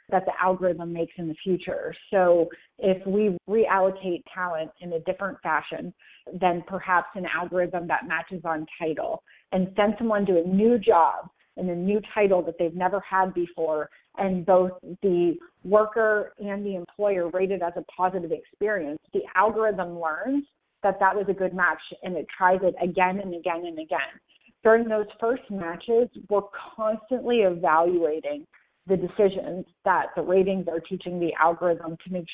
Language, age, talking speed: English, 30-49, 165 wpm